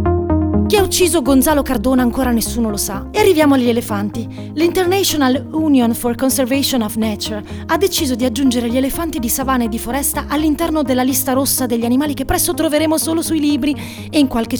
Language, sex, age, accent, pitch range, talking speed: Italian, female, 30-49, native, 255-320 Hz, 185 wpm